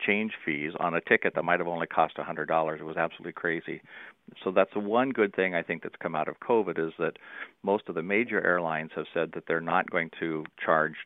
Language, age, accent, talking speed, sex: English, 50-69, American, 220 wpm, male